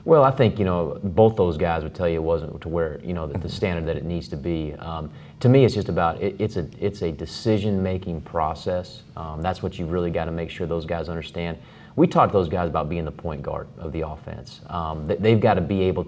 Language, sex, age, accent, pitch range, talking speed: English, male, 30-49, American, 80-100 Hz, 260 wpm